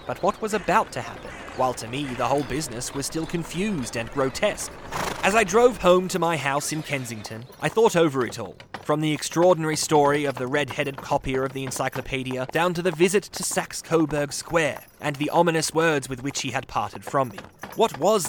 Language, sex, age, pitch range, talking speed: English, male, 20-39, 130-165 Hz, 205 wpm